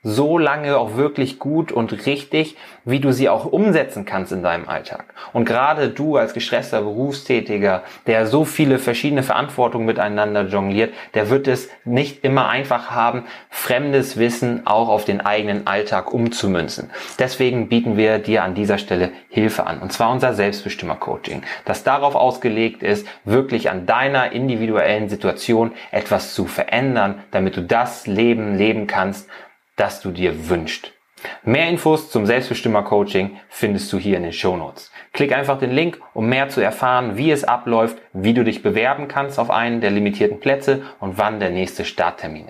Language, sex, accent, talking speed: German, male, German, 160 wpm